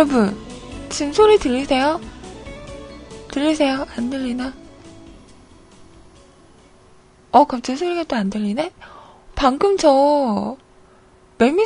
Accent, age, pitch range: native, 20-39, 240-320 Hz